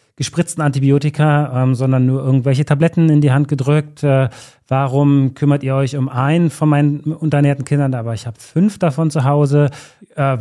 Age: 30-49